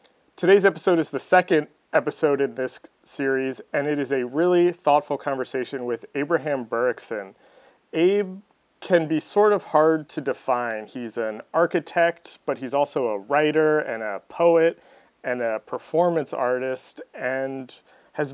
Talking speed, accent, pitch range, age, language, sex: 145 wpm, American, 130-160 Hz, 30-49, English, male